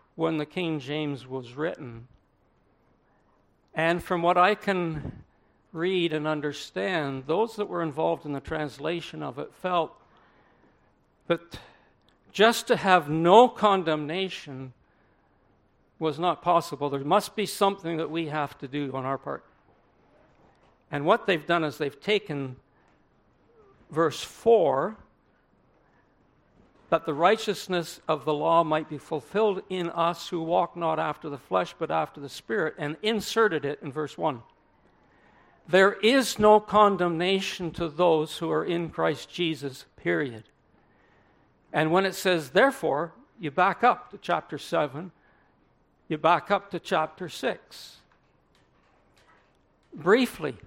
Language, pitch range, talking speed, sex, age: English, 150-195 Hz, 130 wpm, male, 60-79